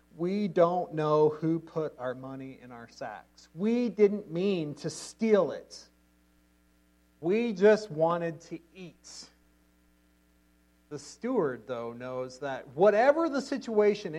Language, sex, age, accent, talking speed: English, male, 40-59, American, 125 wpm